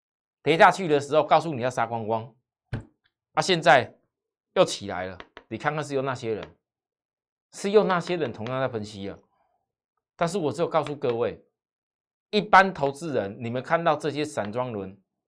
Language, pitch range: Chinese, 125-185 Hz